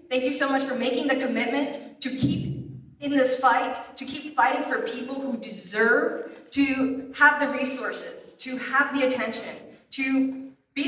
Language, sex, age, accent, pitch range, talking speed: English, female, 20-39, American, 230-275 Hz, 165 wpm